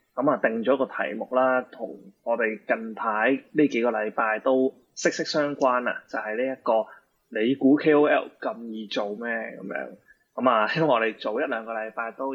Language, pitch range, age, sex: Chinese, 110-145 Hz, 20-39, male